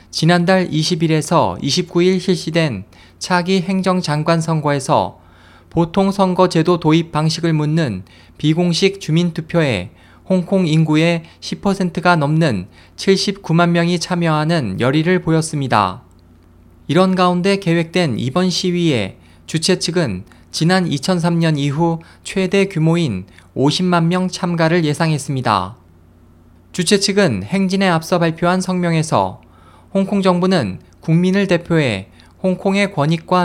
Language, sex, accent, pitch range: Korean, male, native, 115-180 Hz